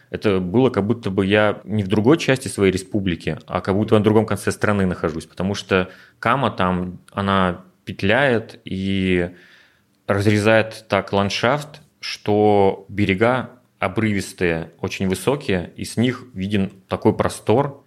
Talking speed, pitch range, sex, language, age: 140 wpm, 90-110 Hz, male, Russian, 30-49